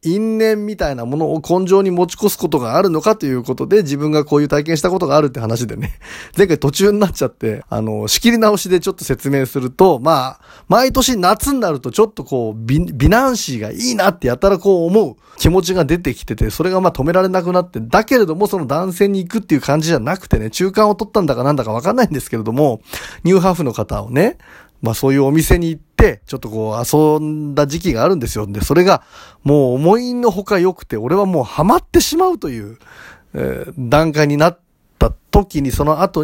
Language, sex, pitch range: Japanese, male, 125-185 Hz